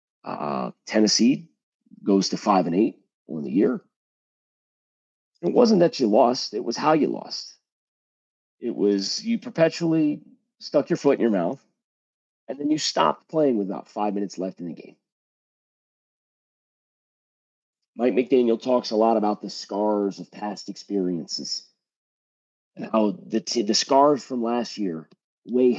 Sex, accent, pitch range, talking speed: male, American, 95-130 Hz, 150 wpm